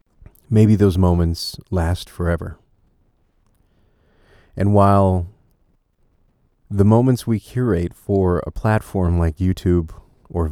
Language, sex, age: English, male, 40-59